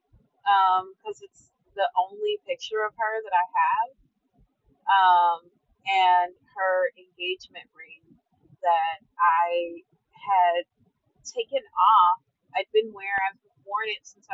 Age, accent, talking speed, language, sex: 30-49, American, 115 wpm, English, female